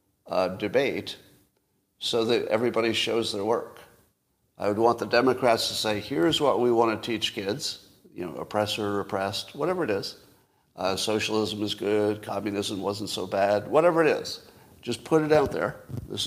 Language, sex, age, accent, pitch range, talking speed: English, male, 50-69, American, 100-120 Hz, 170 wpm